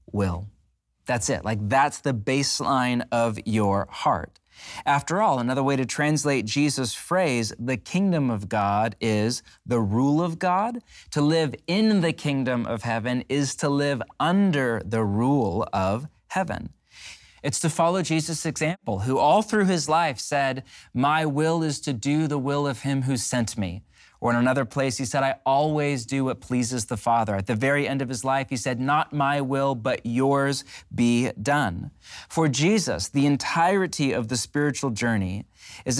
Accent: American